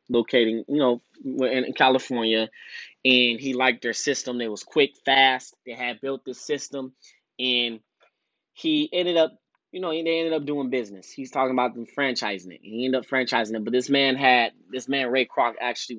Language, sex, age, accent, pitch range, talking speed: English, male, 20-39, American, 115-135 Hz, 190 wpm